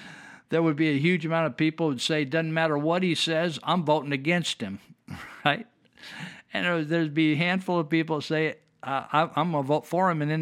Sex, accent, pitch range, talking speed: male, American, 140-160 Hz, 205 wpm